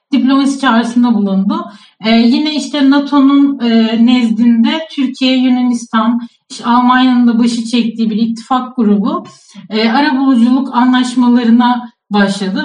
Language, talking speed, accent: Turkish, 105 wpm, native